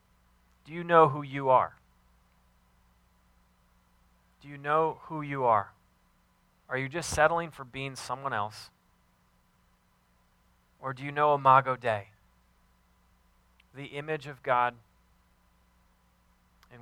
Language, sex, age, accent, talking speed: English, male, 30-49, American, 110 wpm